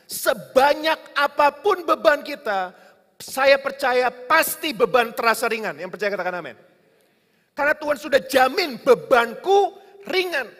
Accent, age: native, 30-49